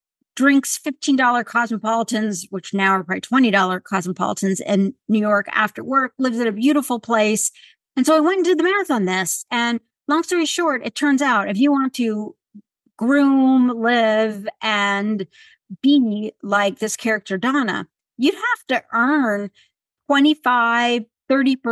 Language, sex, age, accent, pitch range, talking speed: English, female, 50-69, American, 205-275 Hz, 145 wpm